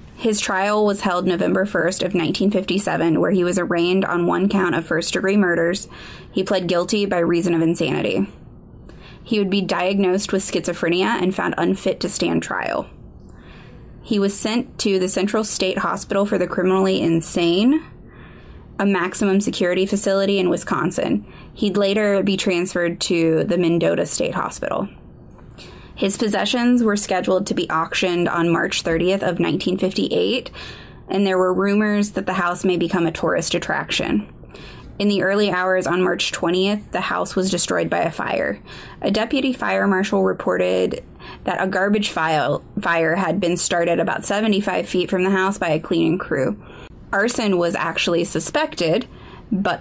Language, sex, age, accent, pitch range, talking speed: English, female, 20-39, American, 175-200 Hz, 155 wpm